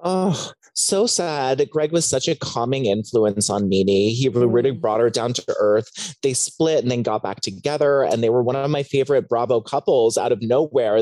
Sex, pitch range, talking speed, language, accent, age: male, 115-170 Hz, 200 wpm, English, American, 30-49